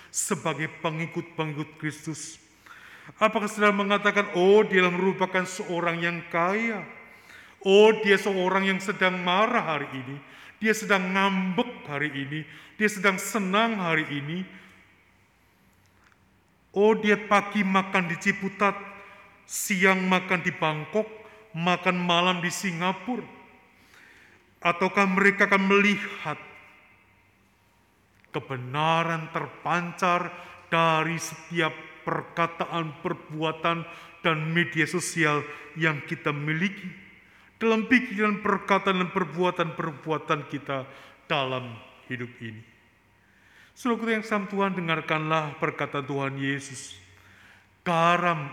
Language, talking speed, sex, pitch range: Indonesian, 95 wpm, male, 135-190 Hz